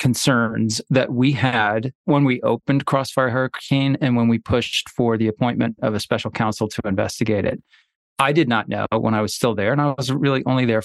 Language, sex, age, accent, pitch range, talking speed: English, male, 20-39, American, 115-135 Hz, 210 wpm